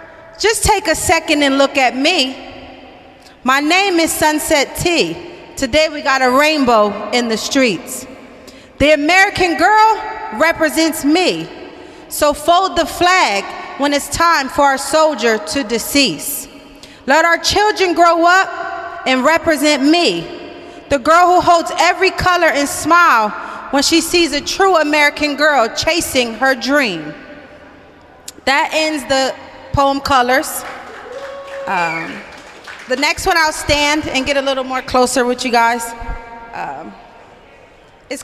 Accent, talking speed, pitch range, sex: American, 135 wpm, 275-350 Hz, female